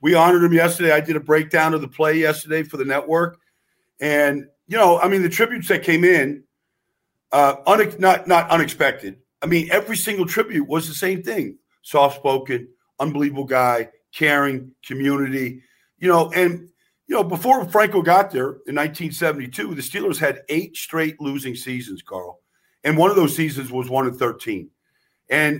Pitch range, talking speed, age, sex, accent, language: 135-175 Hz, 165 wpm, 50-69, male, American, English